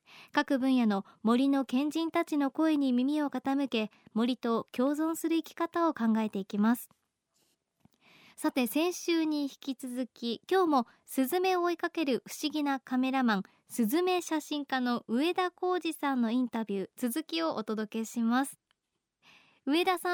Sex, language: male, Japanese